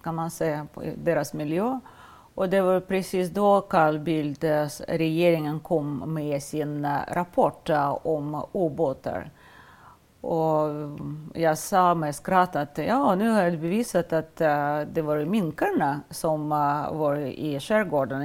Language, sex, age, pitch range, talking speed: Swedish, female, 40-59, 150-190 Hz, 135 wpm